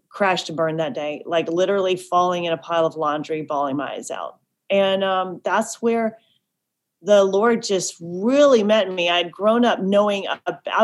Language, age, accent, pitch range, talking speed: English, 30-49, American, 170-220 Hz, 175 wpm